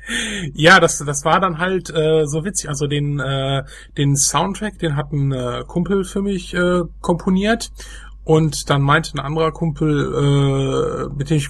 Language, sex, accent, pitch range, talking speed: German, male, German, 130-160 Hz, 170 wpm